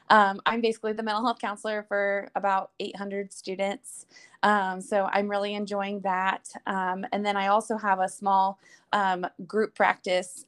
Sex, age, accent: female, 20-39, American